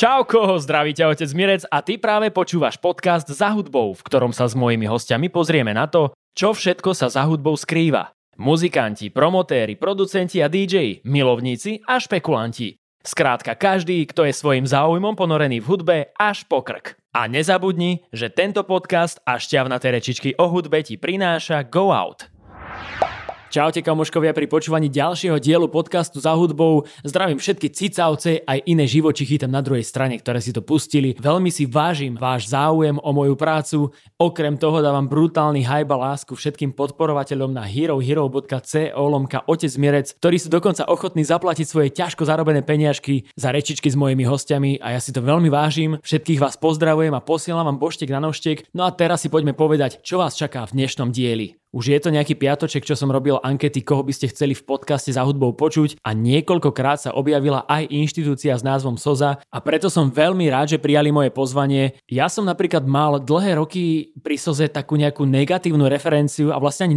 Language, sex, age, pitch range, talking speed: English, male, 20-39, 135-165 Hz, 175 wpm